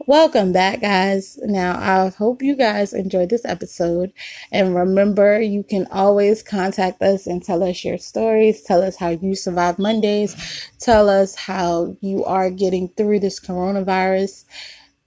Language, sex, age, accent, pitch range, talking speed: English, female, 20-39, American, 180-210 Hz, 150 wpm